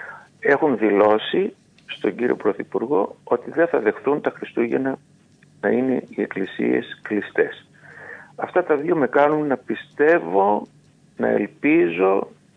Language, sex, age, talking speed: Greek, male, 50-69, 120 wpm